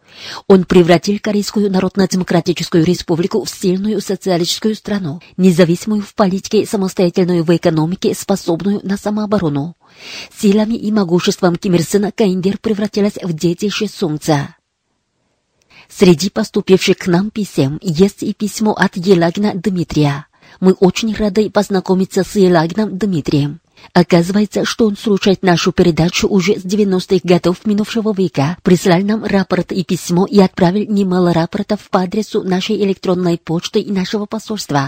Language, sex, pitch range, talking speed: Russian, female, 175-205 Hz, 130 wpm